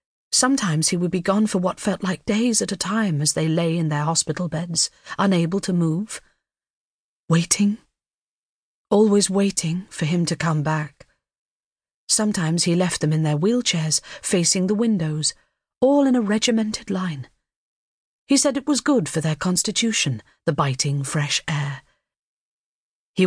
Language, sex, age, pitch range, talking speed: English, female, 40-59, 155-195 Hz, 150 wpm